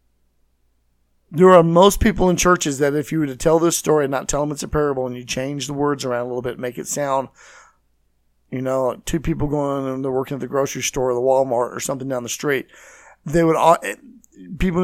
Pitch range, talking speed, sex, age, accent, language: 115-165 Hz, 225 wpm, male, 40-59, American, English